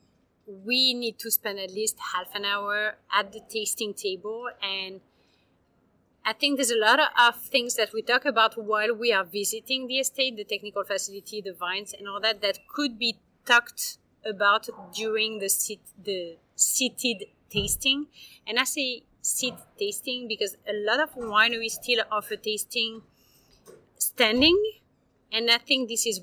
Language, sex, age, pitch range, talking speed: English, female, 30-49, 205-250 Hz, 155 wpm